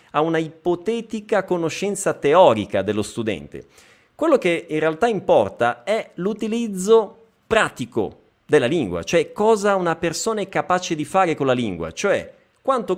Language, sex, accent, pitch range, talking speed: Italian, male, native, 115-190 Hz, 135 wpm